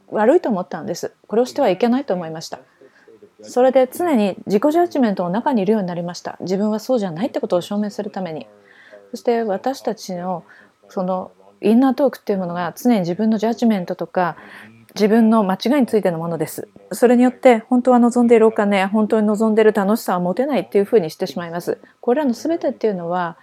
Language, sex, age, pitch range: English, female, 30-49, 185-255 Hz